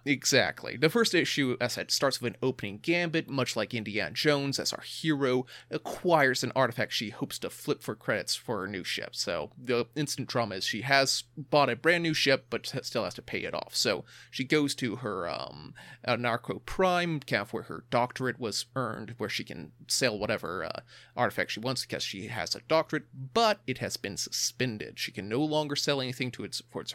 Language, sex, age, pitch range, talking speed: English, male, 30-49, 115-140 Hz, 215 wpm